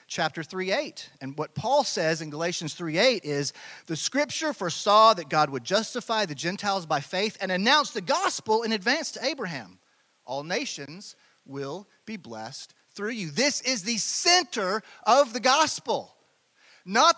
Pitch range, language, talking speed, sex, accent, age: 160-220 Hz, English, 160 wpm, male, American, 40-59